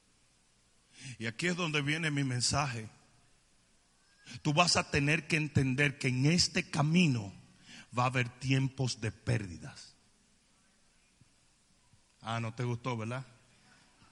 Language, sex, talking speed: Spanish, male, 120 wpm